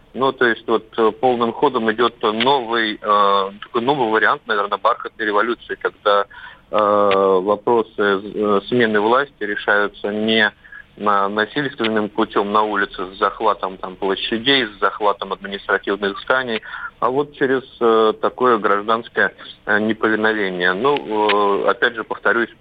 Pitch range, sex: 105-125 Hz, male